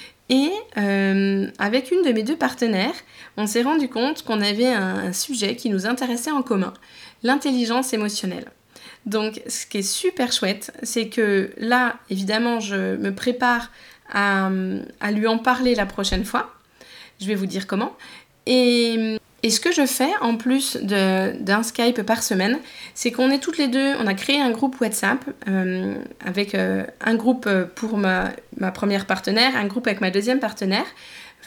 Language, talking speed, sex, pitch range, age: French, 170 wpm, female, 200-255 Hz, 20-39